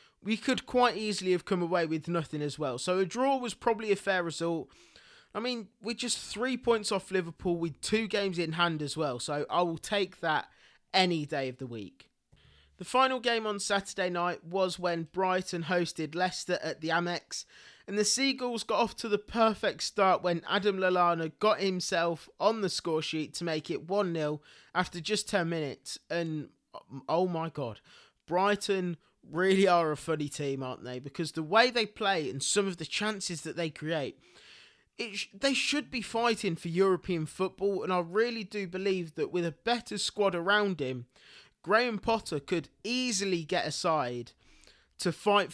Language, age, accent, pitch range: English, 20-39, British, 160-210 Hz